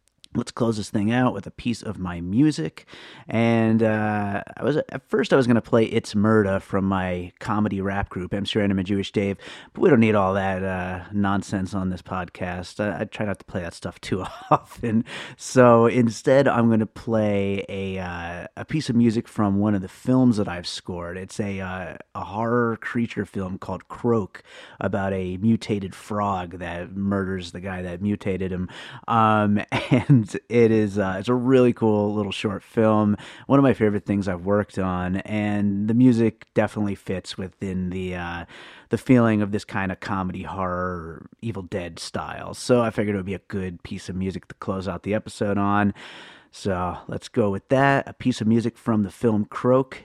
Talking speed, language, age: 195 wpm, English, 30-49